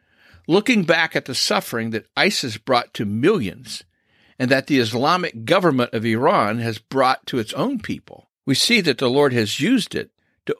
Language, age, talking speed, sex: English, 50-69, 180 wpm, male